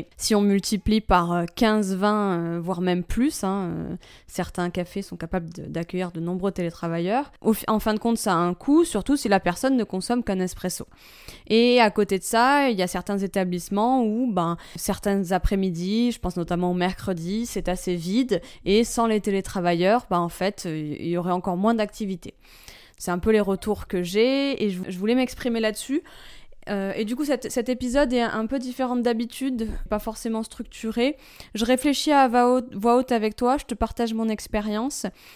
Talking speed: 185 wpm